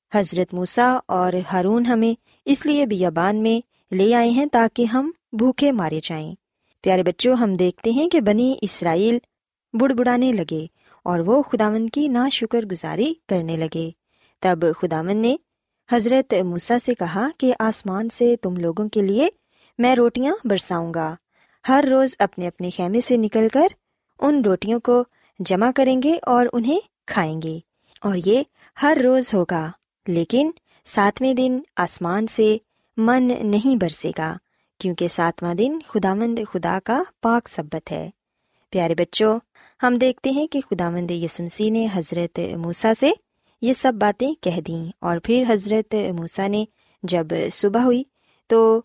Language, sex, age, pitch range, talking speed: Urdu, female, 20-39, 180-255 Hz, 150 wpm